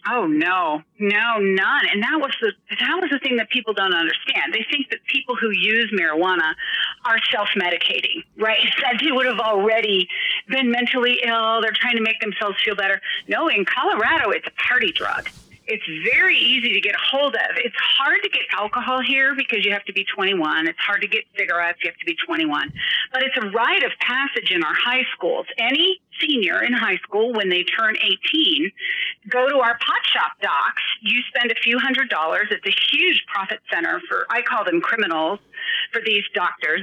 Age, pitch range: 40-59, 200-280 Hz